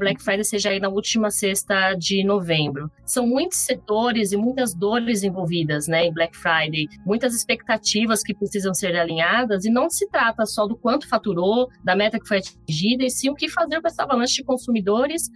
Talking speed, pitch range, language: 190 wpm, 185-250 Hz, Portuguese